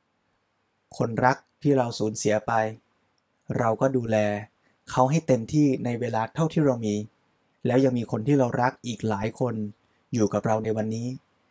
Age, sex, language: 20-39, male, Thai